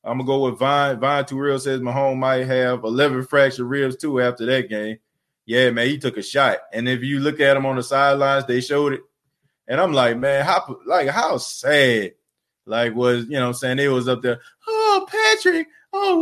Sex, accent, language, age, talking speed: male, American, English, 20-39, 220 wpm